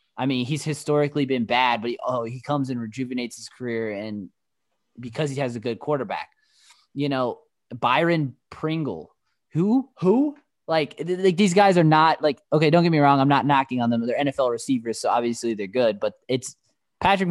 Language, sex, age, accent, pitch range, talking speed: English, male, 20-39, American, 120-150 Hz, 200 wpm